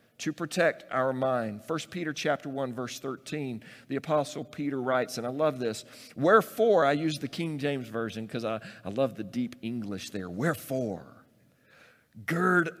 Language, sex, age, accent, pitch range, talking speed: English, male, 50-69, American, 115-150 Hz, 165 wpm